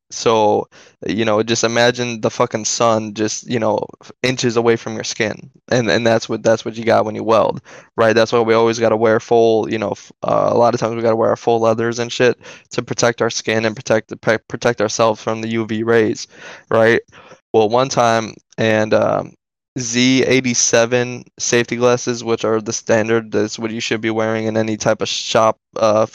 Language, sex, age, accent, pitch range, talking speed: English, male, 10-29, American, 110-120 Hz, 205 wpm